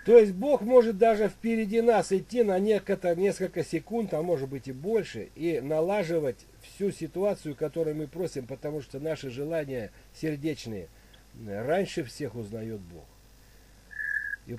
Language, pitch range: Russian, 120-175 Hz